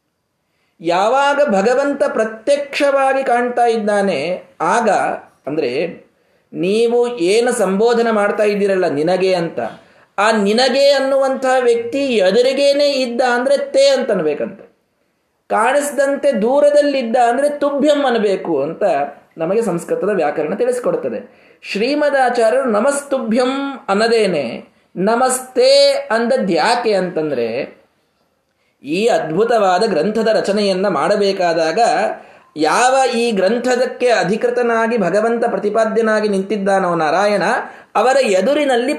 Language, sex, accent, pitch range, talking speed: Kannada, male, native, 210-275 Hz, 85 wpm